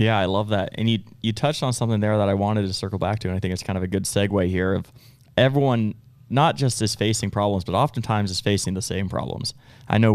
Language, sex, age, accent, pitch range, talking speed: English, male, 20-39, American, 100-120 Hz, 260 wpm